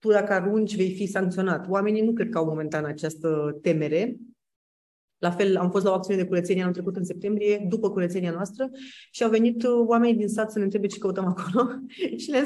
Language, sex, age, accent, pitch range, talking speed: Romanian, female, 30-49, native, 185-225 Hz, 210 wpm